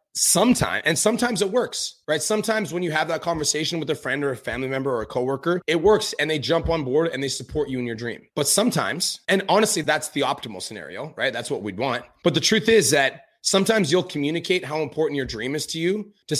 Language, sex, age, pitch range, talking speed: English, male, 30-49, 140-180 Hz, 240 wpm